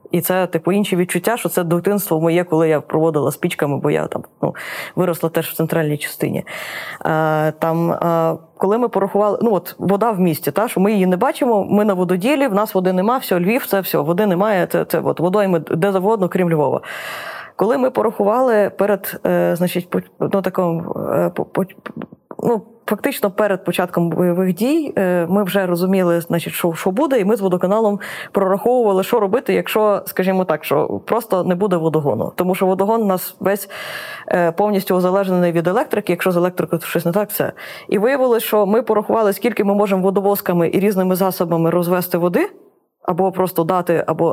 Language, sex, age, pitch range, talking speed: Ukrainian, female, 20-39, 175-210 Hz, 185 wpm